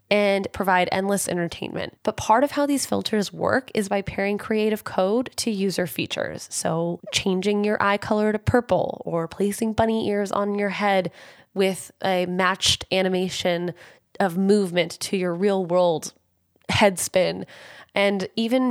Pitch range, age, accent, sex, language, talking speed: 180-215 Hz, 10-29, American, female, English, 150 wpm